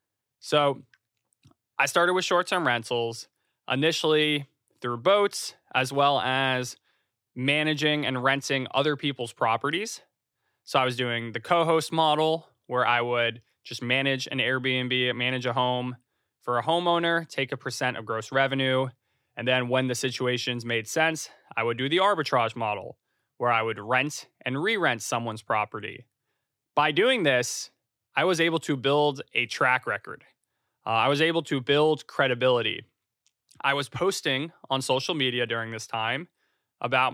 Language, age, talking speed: English, 20-39, 150 wpm